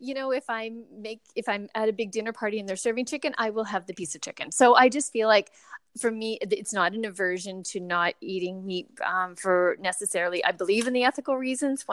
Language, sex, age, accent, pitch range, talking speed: English, female, 30-49, American, 185-225 Hz, 235 wpm